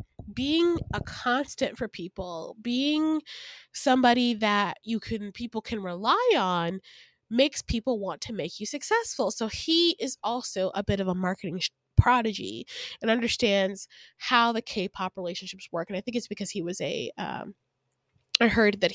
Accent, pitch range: American, 185-265 Hz